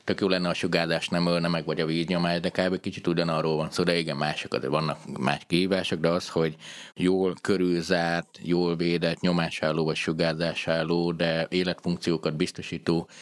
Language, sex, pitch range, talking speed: Hungarian, male, 80-95 Hz, 170 wpm